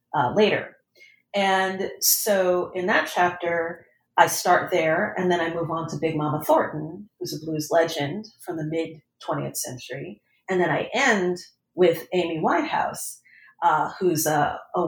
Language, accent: English, American